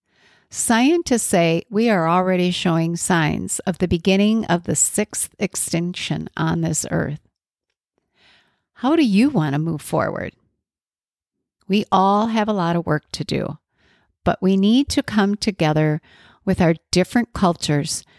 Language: English